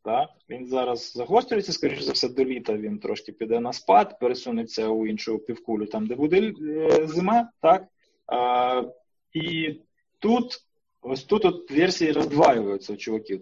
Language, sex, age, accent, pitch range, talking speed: Ukrainian, male, 20-39, native, 120-175 Hz, 150 wpm